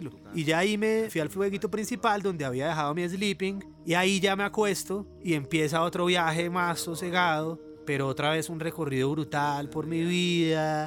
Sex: male